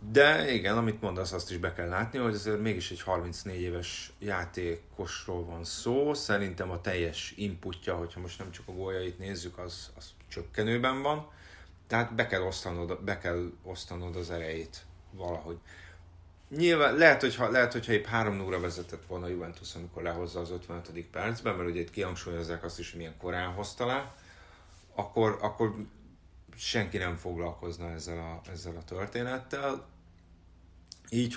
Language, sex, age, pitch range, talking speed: Hungarian, male, 30-49, 85-105 Hz, 155 wpm